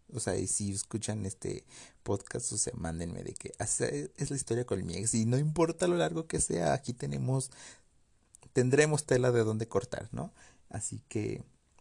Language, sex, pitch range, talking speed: Spanish, male, 90-120 Hz, 180 wpm